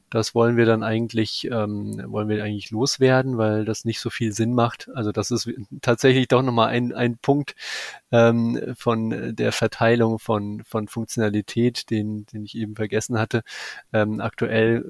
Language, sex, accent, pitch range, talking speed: German, male, German, 105-120 Hz, 165 wpm